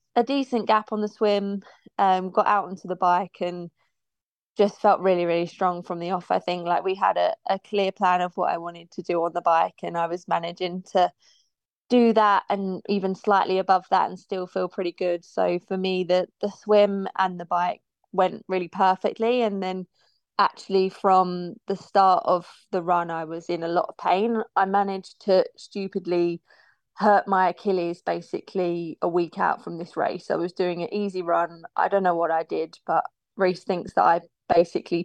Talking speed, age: 200 wpm, 20-39